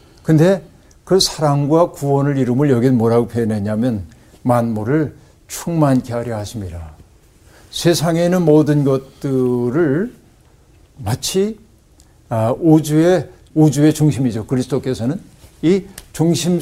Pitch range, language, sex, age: 115-160 Hz, Korean, male, 50-69